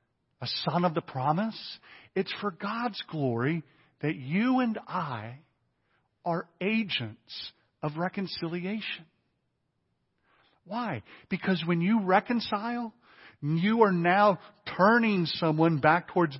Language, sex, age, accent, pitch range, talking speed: English, male, 50-69, American, 140-190 Hz, 100 wpm